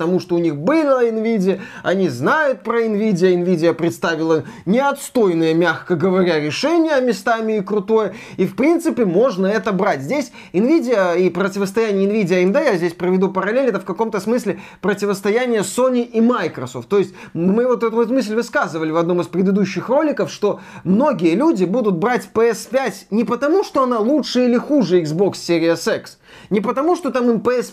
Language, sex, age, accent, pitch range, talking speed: Russian, male, 20-39, native, 180-235 Hz, 170 wpm